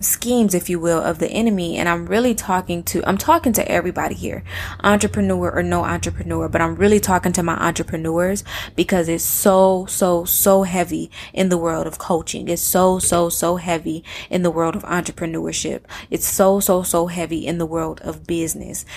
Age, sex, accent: 20-39, female, American